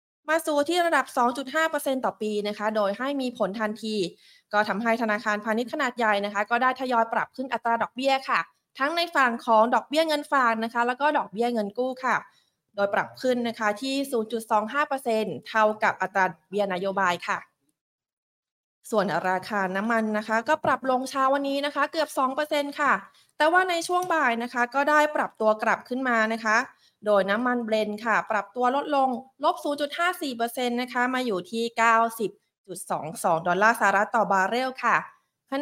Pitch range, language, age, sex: 210-280 Hz, Thai, 20-39, female